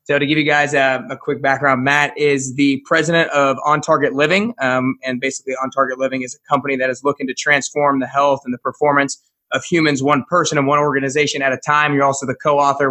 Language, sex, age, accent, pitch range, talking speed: English, male, 20-39, American, 130-145 Hz, 230 wpm